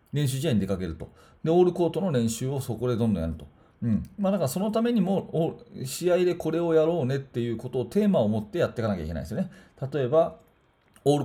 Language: Japanese